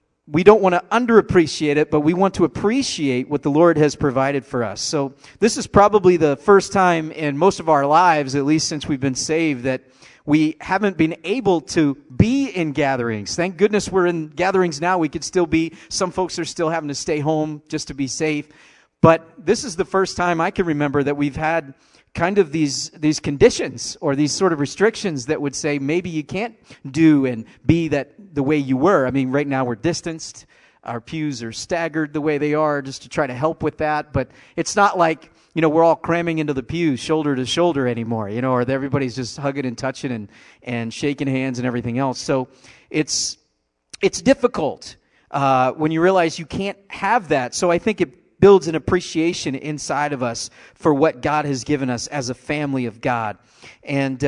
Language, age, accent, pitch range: English, 40-59, American, 135-170 Hz